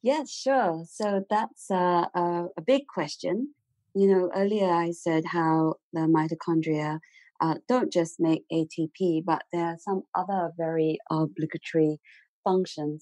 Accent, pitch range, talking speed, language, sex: British, 155-185 Hz, 140 wpm, English, female